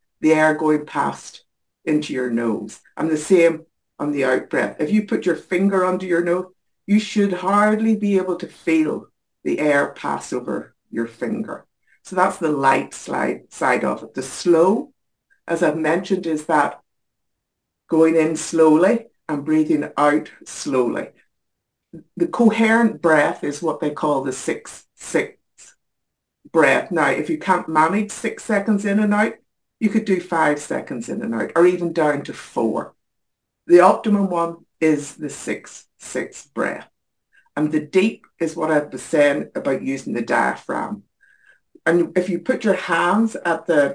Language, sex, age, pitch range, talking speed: English, female, 60-79, 150-190 Hz, 160 wpm